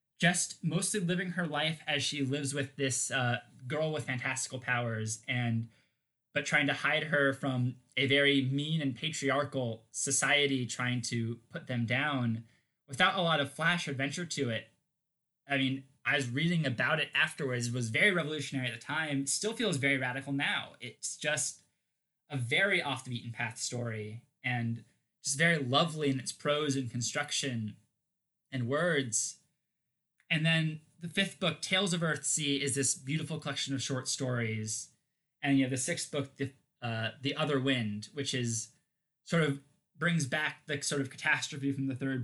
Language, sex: English, male